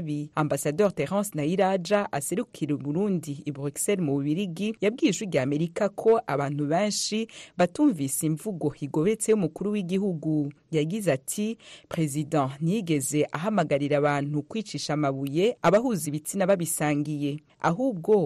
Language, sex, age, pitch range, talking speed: English, female, 40-59, 145-205 Hz, 100 wpm